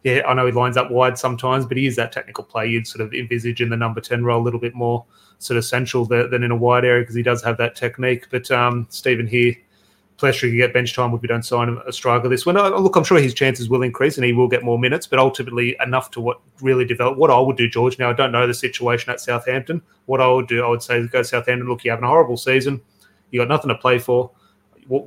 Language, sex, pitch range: English, male, 120-130 Hz